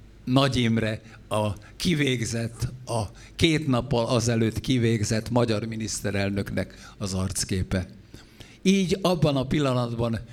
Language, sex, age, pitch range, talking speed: Hungarian, male, 60-79, 110-135 Hz, 95 wpm